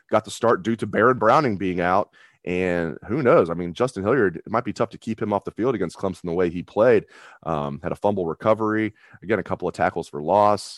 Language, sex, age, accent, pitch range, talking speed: English, male, 30-49, American, 80-105 Hz, 245 wpm